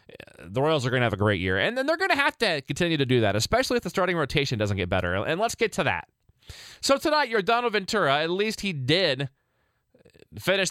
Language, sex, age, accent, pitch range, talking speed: English, male, 20-39, American, 115-170 Hz, 235 wpm